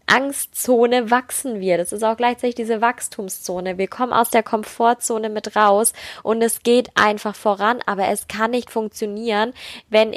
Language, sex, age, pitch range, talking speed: German, female, 10-29, 215-255 Hz, 160 wpm